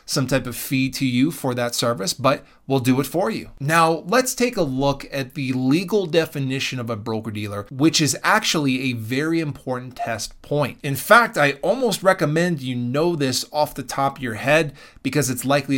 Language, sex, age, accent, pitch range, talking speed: English, male, 30-49, American, 120-170 Hz, 200 wpm